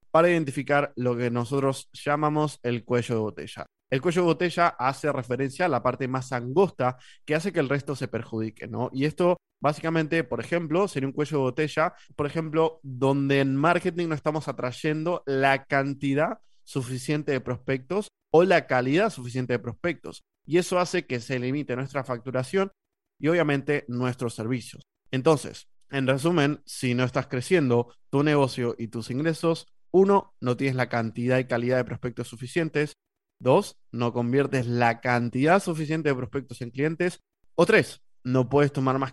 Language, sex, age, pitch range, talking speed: Spanish, male, 20-39, 125-155 Hz, 165 wpm